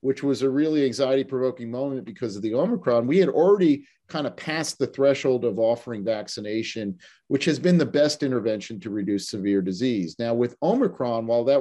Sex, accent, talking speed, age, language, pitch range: male, American, 185 wpm, 50-69, English, 120-145 Hz